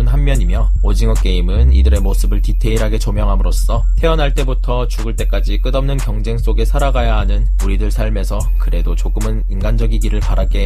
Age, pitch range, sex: 20-39, 100-130 Hz, male